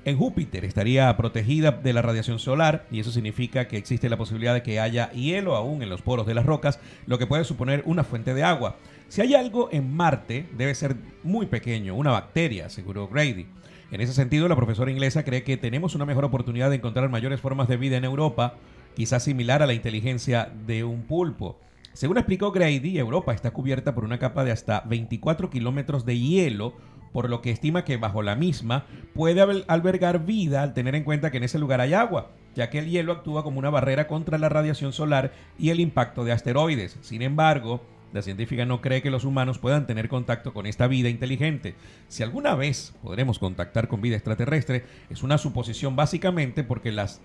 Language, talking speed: Spanish, 200 wpm